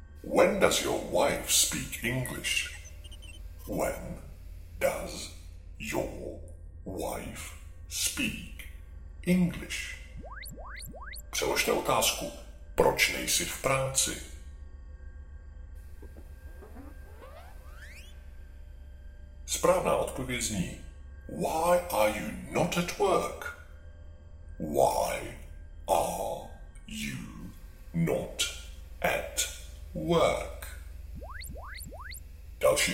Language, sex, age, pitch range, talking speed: Czech, female, 60-79, 75-80 Hz, 60 wpm